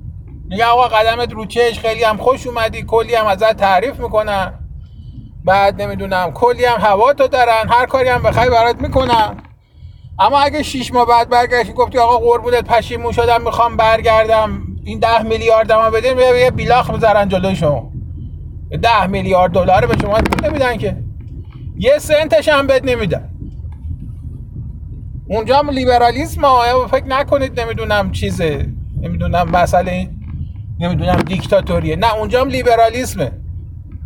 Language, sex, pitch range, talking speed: Persian, male, 180-260 Hz, 135 wpm